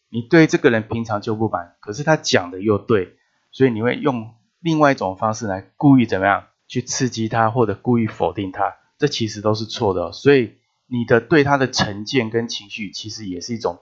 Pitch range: 105-135 Hz